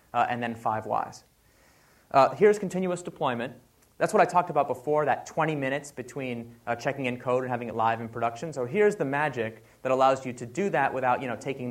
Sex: male